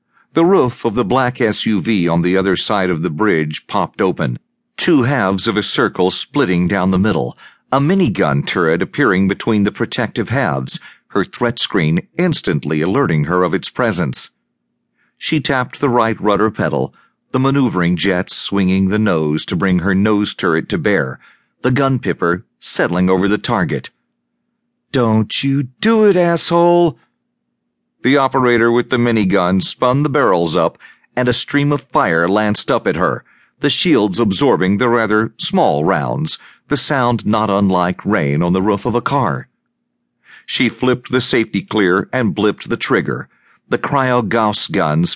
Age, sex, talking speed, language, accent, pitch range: 40-59, male, 160 wpm, English, American, 95-130 Hz